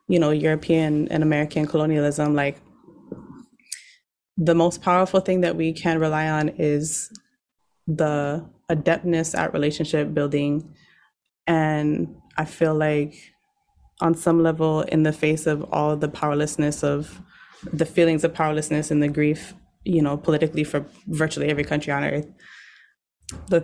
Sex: female